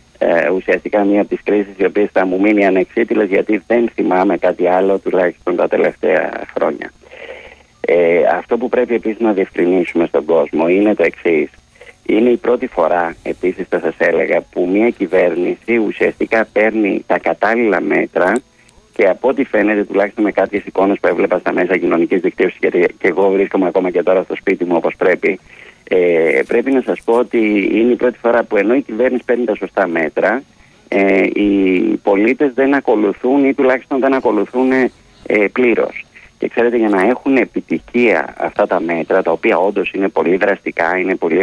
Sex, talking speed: male, 165 wpm